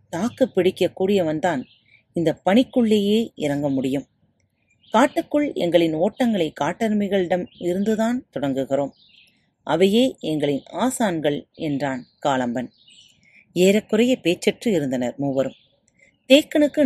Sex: female